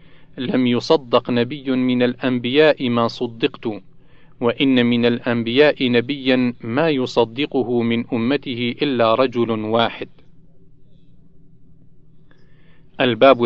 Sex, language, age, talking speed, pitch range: male, Arabic, 40-59, 85 wpm, 120-150 Hz